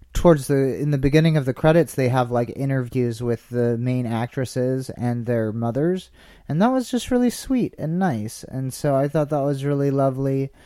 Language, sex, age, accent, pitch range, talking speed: English, male, 30-49, American, 120-145 Hz, 195 wpm